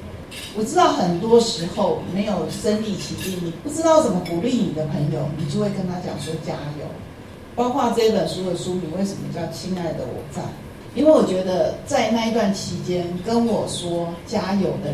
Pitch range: 160-225 Hz